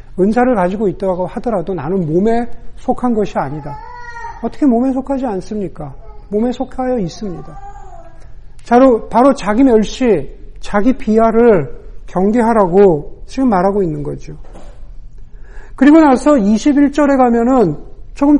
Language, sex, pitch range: Korean, male, 145-230 Hz